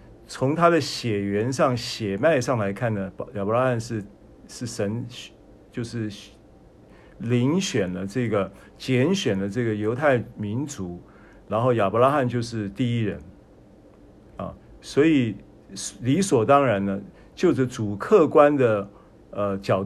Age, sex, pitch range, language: 50-69, male, 100-135 Hz, Chinese